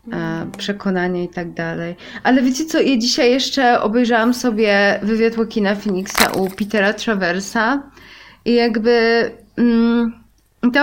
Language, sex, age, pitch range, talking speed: Polish, female, 20-39, 190-230 Hz, 115 wpm